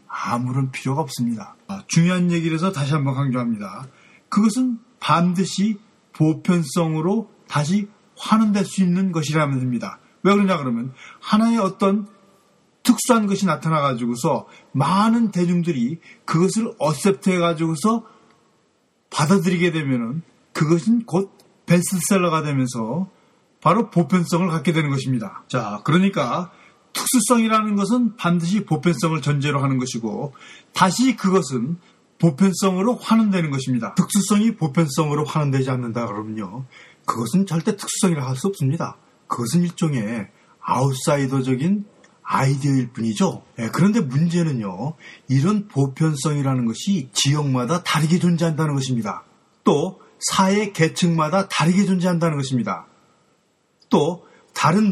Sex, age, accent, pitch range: male, 40-59, native, 140-195 Hz